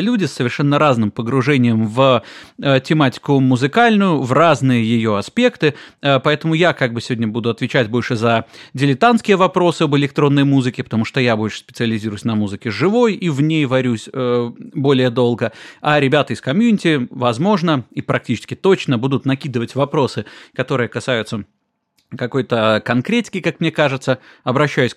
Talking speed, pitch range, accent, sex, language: 150 wpm, 120-160 Hz, native, male, Russian